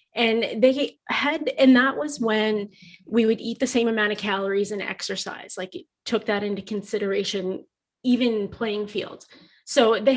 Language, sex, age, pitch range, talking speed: English, female, 30-49, 190-235 Hz, 165 wpm